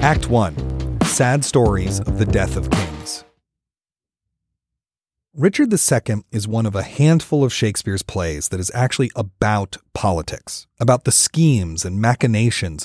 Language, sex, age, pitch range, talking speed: English, male, 30-49, 95-140 Hz, 135 wpm